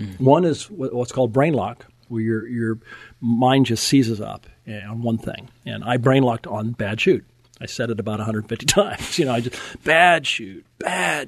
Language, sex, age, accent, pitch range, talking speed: English, male, 50-69, American, 120-150 Hz, 195 wpm